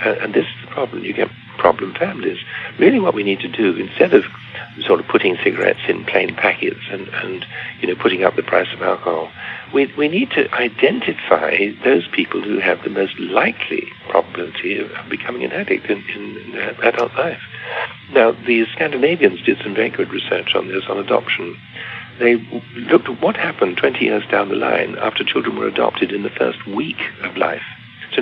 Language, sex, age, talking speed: English, male, 60-79, 190 wpm